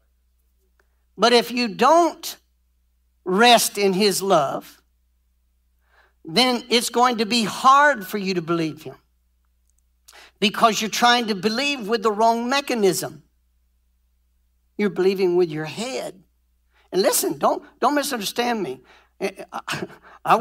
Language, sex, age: English, male, 60-79